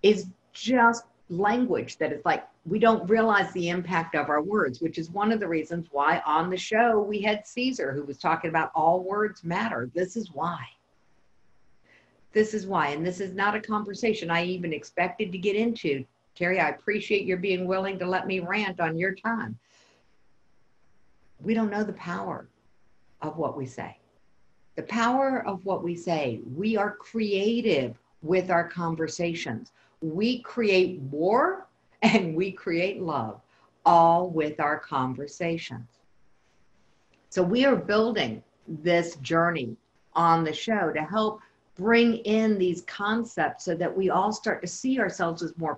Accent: American